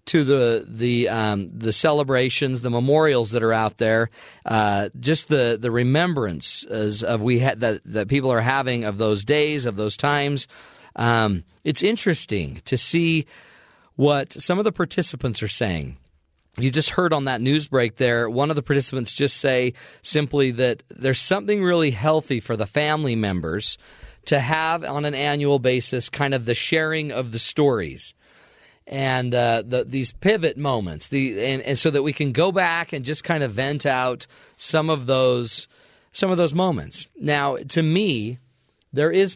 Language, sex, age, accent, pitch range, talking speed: English, male, 40-59, American, 115-150 Hz, 175 wpm